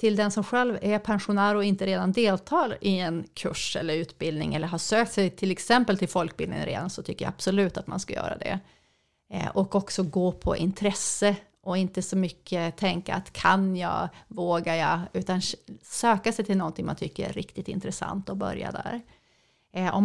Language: English